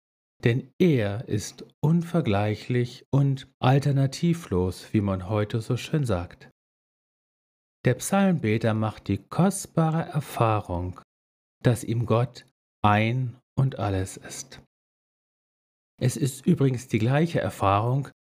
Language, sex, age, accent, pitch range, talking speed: German, male, 50-69, German, 90-140 Hz, 100 wpm